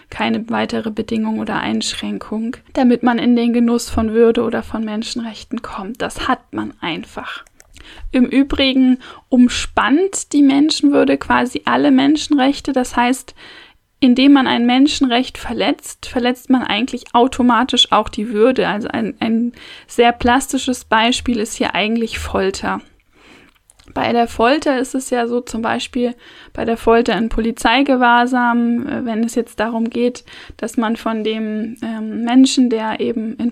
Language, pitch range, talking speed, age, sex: German, 225-265 Hz, 140 wpm, 10-29, female